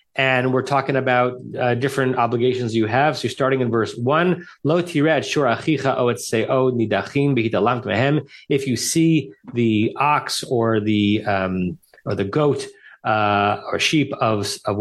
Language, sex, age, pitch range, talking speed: English, male, 30-49, 115-150 Hz, 125 wpm